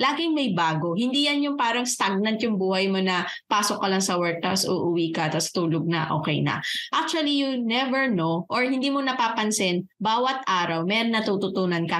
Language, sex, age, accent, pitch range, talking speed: Filipino, female, 20-39, native, 195-255 Hz, 185 wpm